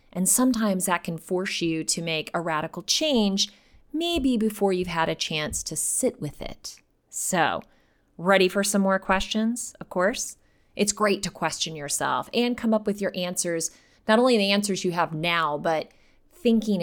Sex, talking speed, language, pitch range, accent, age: female, 175 wpm, English, 165-220 Hz, American, 30-49